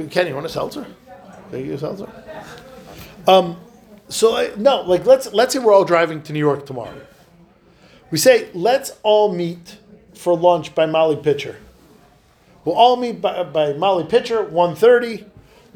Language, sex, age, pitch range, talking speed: English, male, 50-69, 150-205 Hz, 160 wpm